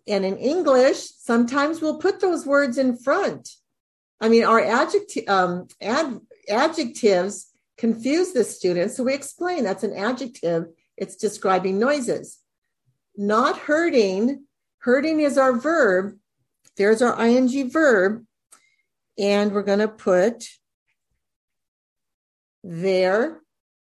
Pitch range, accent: 200-275 Hz, American